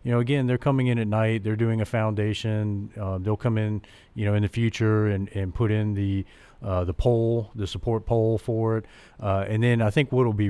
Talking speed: 240 wpm